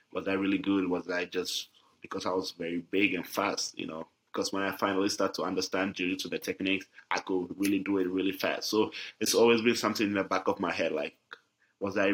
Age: 20-39